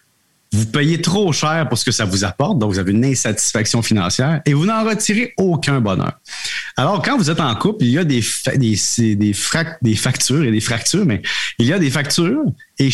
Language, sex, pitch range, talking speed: French, male, 115-165 Hz, 225 wpm